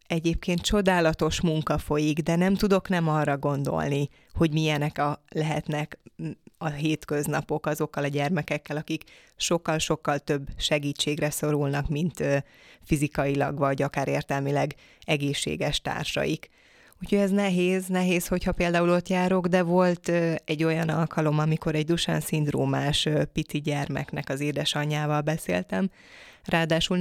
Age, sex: 20-39, female